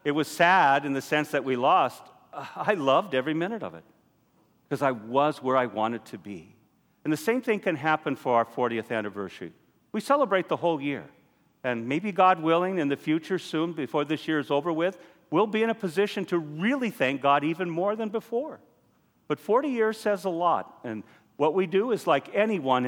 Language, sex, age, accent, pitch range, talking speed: English, male, 50-69, American, 130-185 Hz, 205 wpm